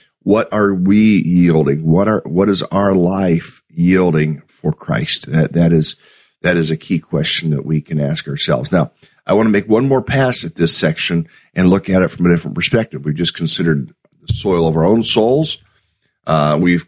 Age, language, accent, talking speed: 40-59, English, American, 200 wpm